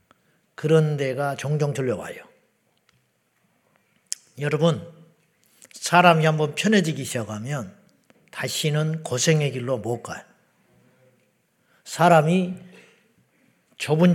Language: Korean